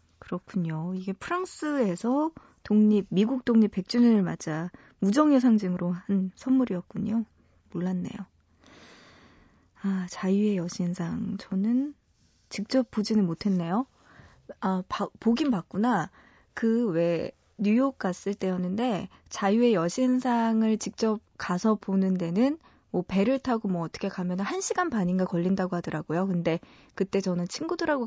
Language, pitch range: Korean, 185-240 Hz